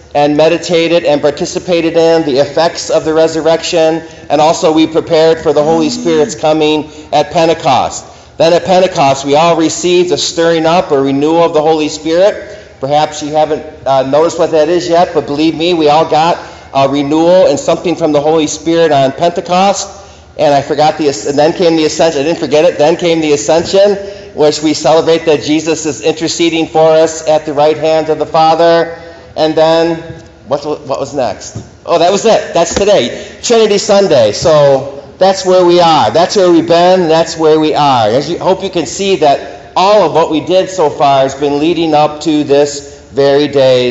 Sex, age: male, 40-59